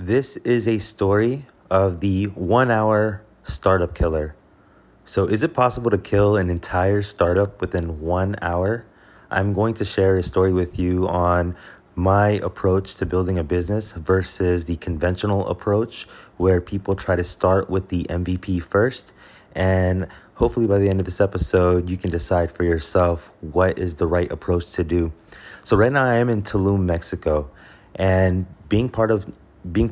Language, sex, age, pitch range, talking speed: English, male, 20-39, 90-100 Hz, 165 wpm